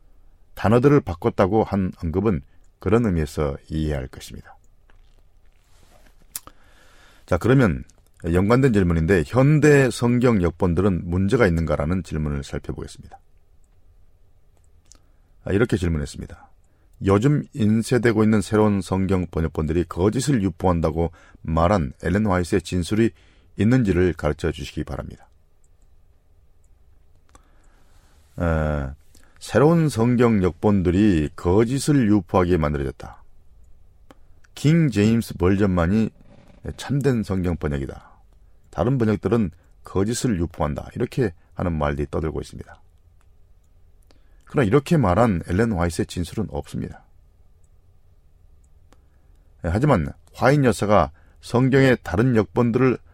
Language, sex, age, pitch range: Korean, male, 40-59, 80-105 Hz